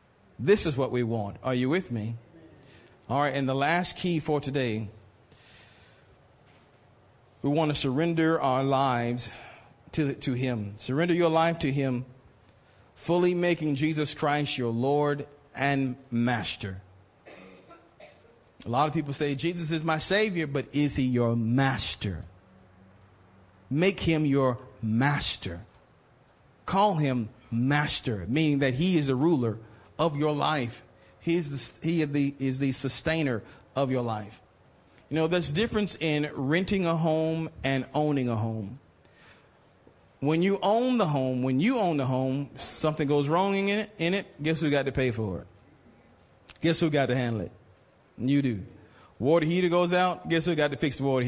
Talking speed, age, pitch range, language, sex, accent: 160 wpm, 40-59, 120-160 Hz, English, male, American